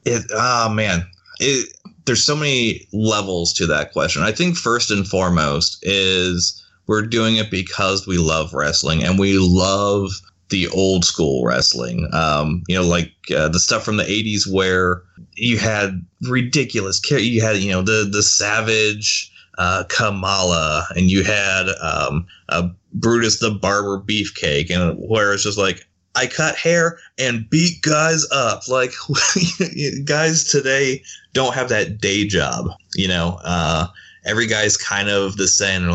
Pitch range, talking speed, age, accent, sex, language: 95-130 Hz, 155 wpm, 30-49, American, male, English